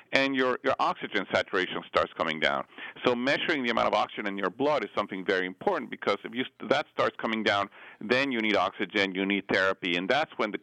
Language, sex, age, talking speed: English, male, 50-69, 220 wpm